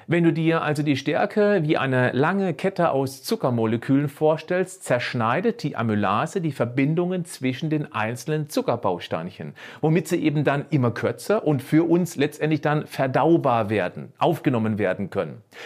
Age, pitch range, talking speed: 40-59, 125-165 Hz, 145 wpm